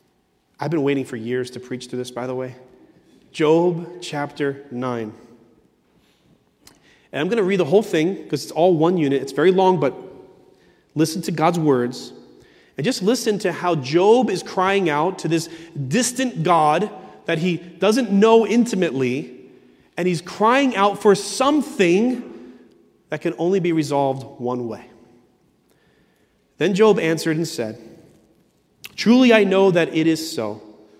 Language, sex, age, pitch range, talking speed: English, male, 30-49, 135-195 Hz, 155 wpm